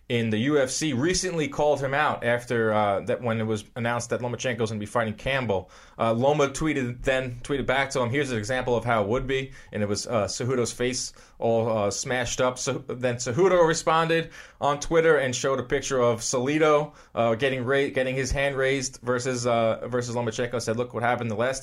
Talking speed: 210 wpm